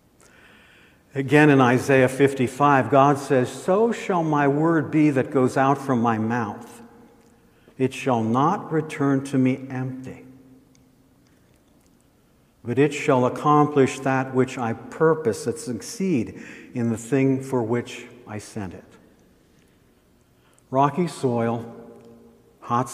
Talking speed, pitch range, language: 120 wpm, 115-135 Hz, English